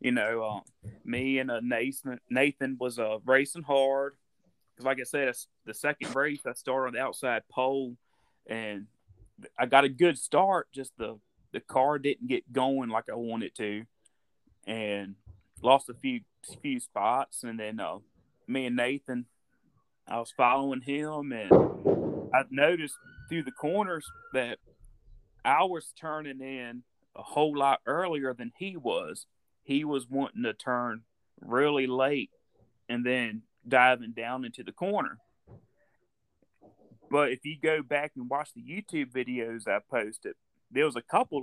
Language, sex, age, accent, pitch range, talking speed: English, male, 30-49, American, 120-150 Hz, 150 wpm